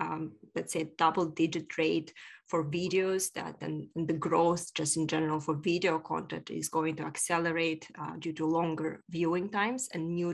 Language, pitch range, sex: English, 155-175 Hz, female